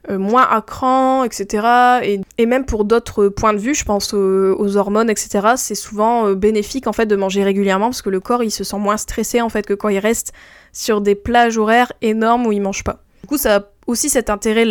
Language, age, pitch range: French, 10-29, 205-240 Hz